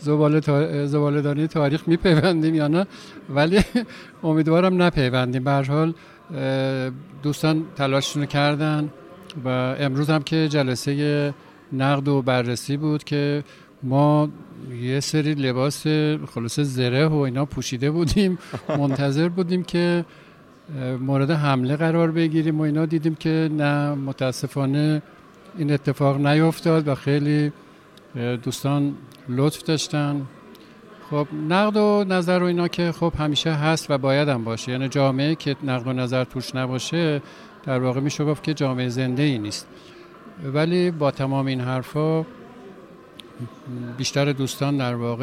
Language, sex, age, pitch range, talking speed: Persian, male, 50-69, 130-155 Hz, 125 wpm